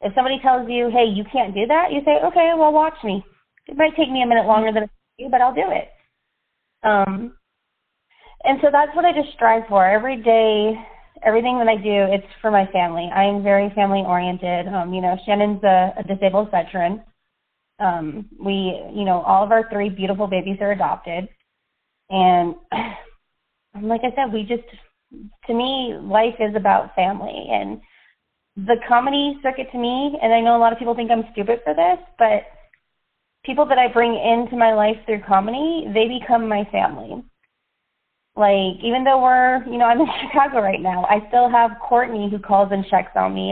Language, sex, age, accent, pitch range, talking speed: English, female, 30-49, American, 200-240 Hz, 190 wpm